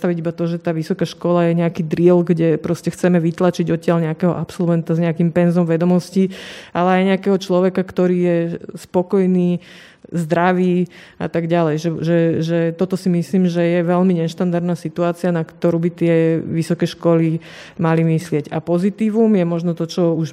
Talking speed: 170 wpm